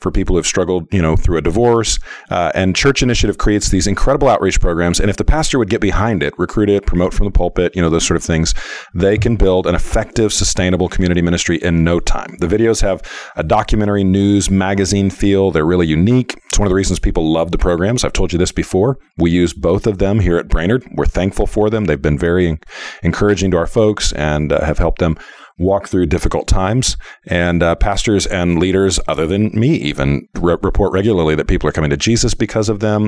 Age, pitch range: 40-59, 85-110 Hz